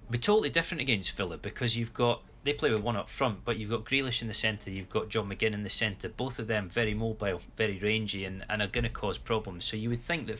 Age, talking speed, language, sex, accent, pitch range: 30-49, 270 wpm, English, male, British, 100-120 Hz